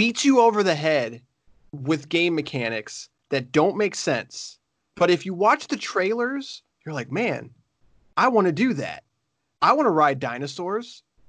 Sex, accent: male, American